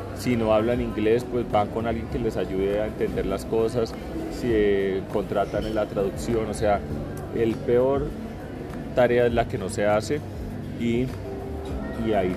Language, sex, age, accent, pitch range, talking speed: Spanish, male, 30-49, Colombian, 95-120 Hz, 165 wpm